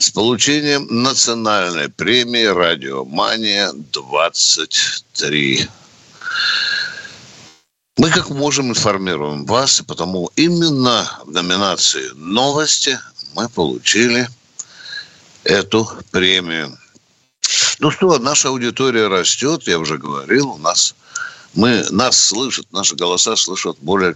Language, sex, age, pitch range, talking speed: Russian, male, 60-79, 95-140 Hz, 90 wpm